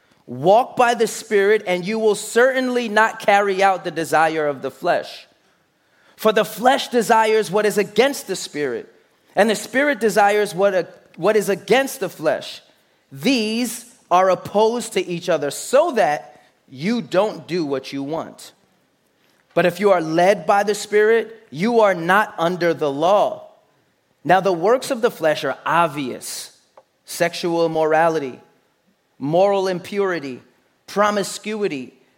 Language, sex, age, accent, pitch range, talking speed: English, male, 30-49, American, 165-220 Hz, 140 wpm